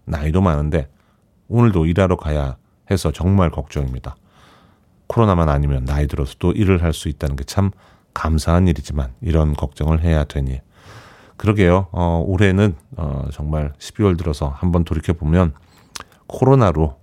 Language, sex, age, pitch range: Korean, male, 30-49, 75-105 Hz